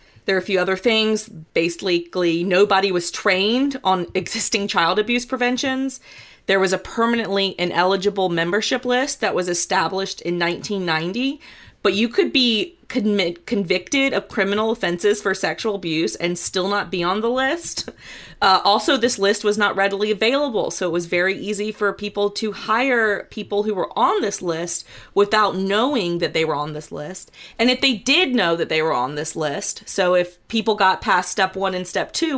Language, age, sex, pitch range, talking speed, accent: English, 30-49, female, 175-225 Hz, 180 wpm, American